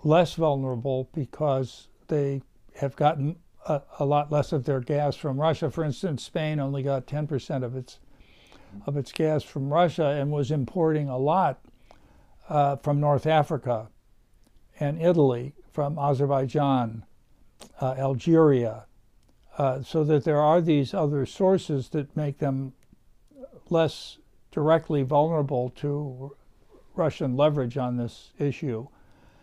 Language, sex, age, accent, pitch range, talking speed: English, male, 60-79, American, 135-155 Hz, 135 wpm